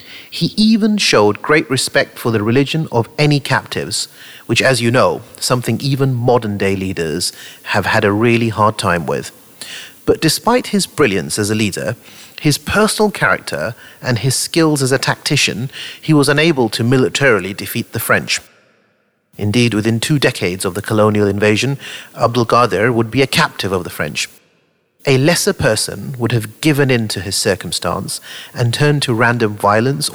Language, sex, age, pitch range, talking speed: English, male, 30-49, 110-150 Hz, 165 wpm